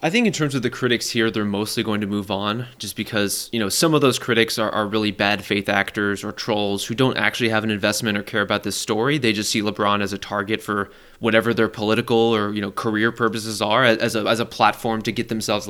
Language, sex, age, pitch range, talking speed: English, male, 20-39, 105-120 Hz, 250 wpm